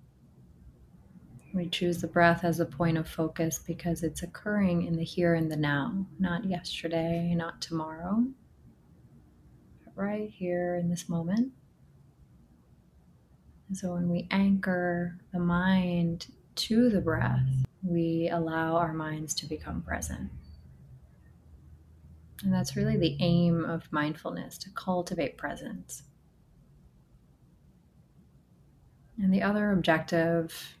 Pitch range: 160-185 Hz